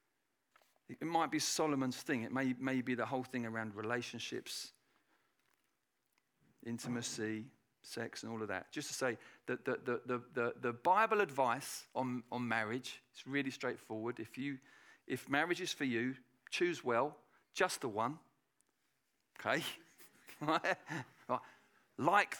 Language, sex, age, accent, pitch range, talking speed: English, male, 50-69, British, 120-185 Hz, 135 wpm